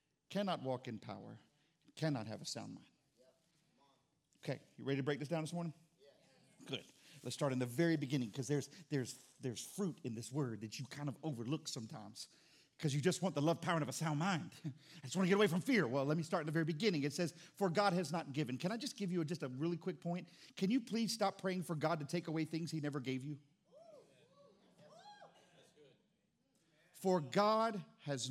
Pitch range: 155-225 Hz